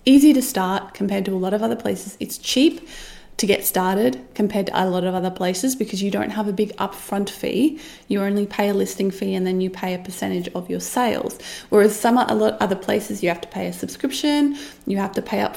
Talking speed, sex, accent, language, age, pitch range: 245 wpm, female, Australian, English, 20-39, 195-225 Hz